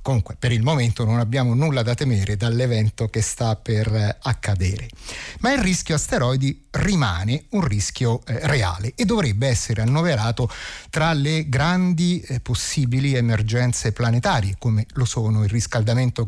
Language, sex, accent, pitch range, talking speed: Italian, male, native, 110-170 Hz, 145 wpm